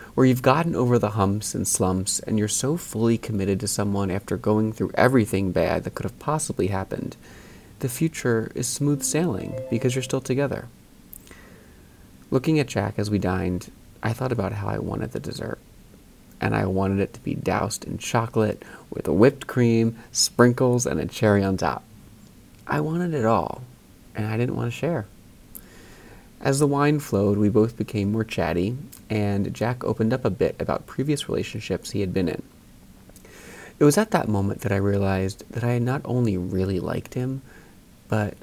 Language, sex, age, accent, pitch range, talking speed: English, male, 30-49, American, 100-125 Hz, 180 wpm